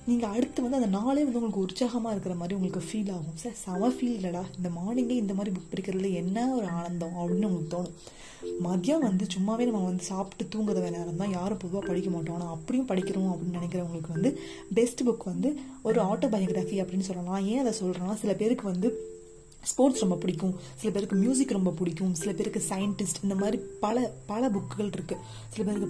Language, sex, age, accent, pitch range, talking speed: Tamil, female, 20-39, native, 180-220 Hz, 190 wpm